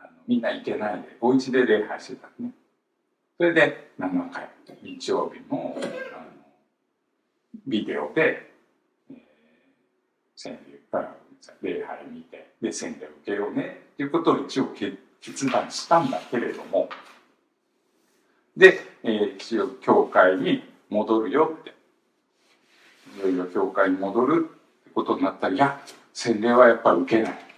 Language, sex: Japanese, male